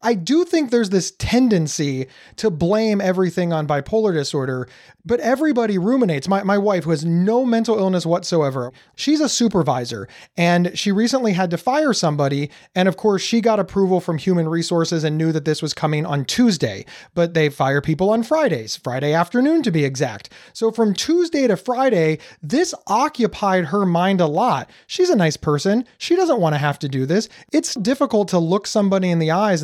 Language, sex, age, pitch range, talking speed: English, male, 30-49, 160-240 Hz, 190 wpm